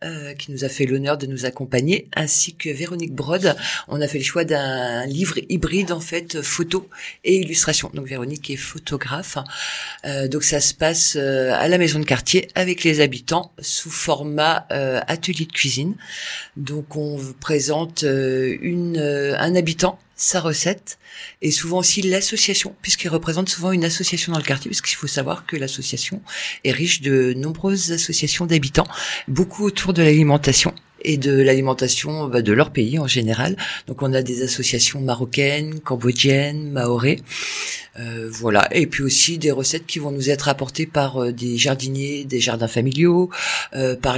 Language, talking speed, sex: French, 165 wpm, female